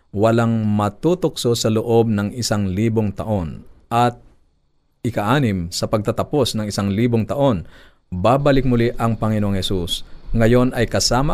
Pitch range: 95-120 Hz